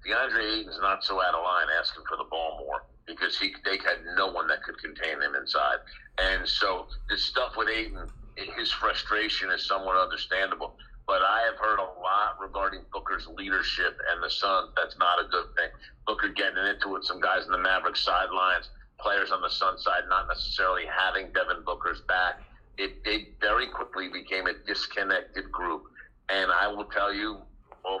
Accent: American